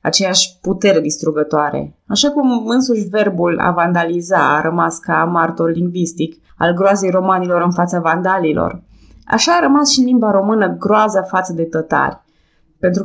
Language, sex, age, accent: Romanian, female, 20-39, native